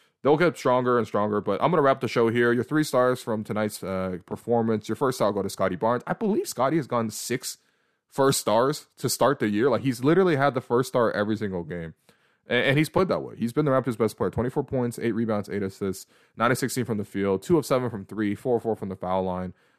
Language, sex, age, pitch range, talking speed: English, male, 20-39, 95-125 Hz, 260 wpm